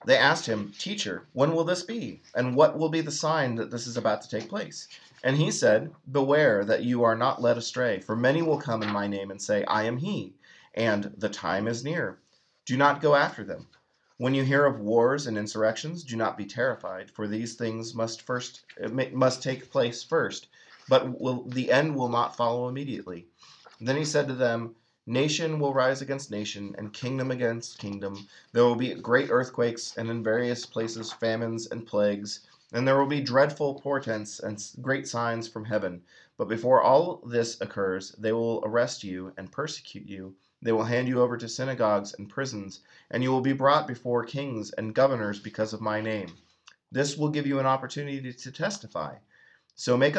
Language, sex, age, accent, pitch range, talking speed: English, male, 30-49, American, 110-135 Hz, 190 wpm